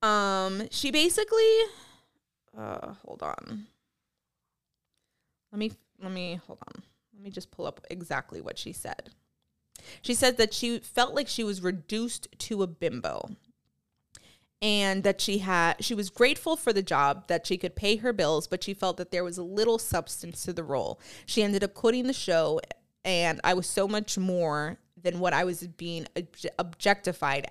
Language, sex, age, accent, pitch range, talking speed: English, female, 20-39, American, 175-220 Hz, 170 wpm